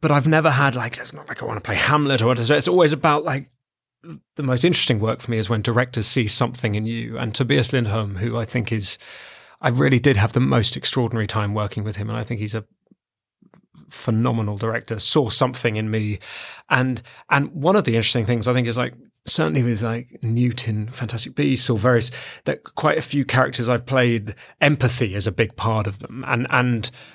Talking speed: 210 wpm